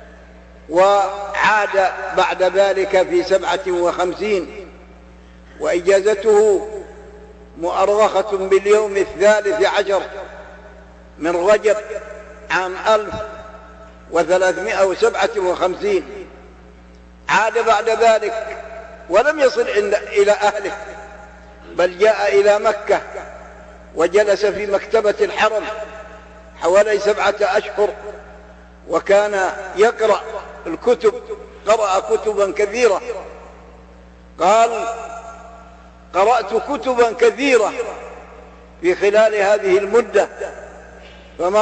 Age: 60-79